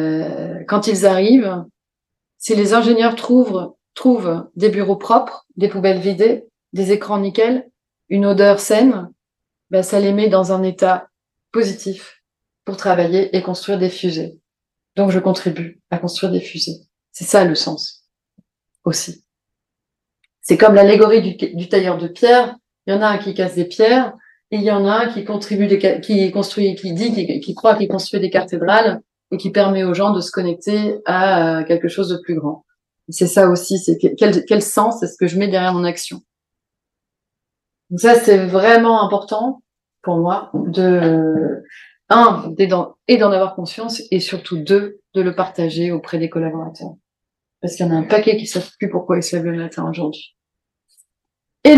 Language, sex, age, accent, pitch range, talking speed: French, female, 30-49, French, 180-220 Hz, 175 wpm